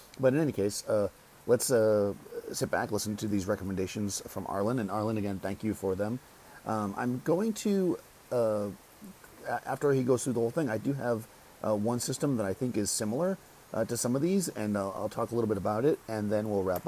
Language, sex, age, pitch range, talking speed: English, male, 40-59, 95-120 Hz, 225 wpm